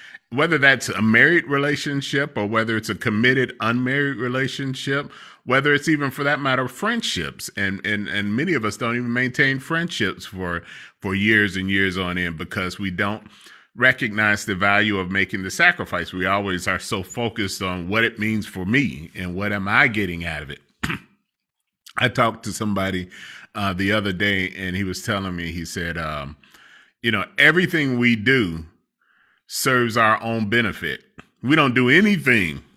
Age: 30-49